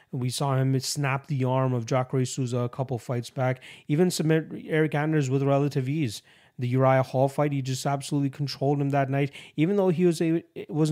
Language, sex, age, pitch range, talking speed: English, male, 30-49, 130-155 Hz, 200 wpm